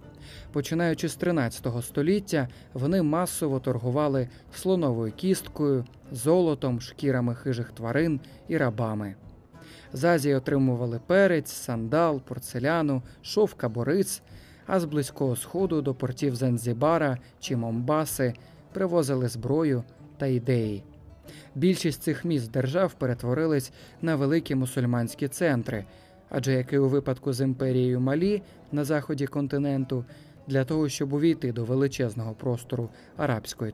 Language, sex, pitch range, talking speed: Ukrainian, male, 125-155 Hz, 115 wpm